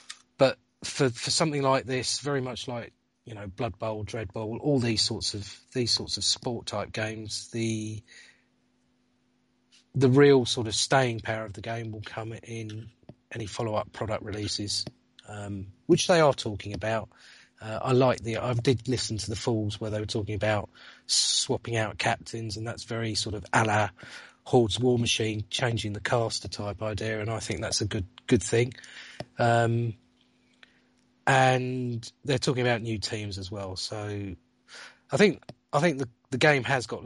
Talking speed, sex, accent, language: 175 wpm, male, British, English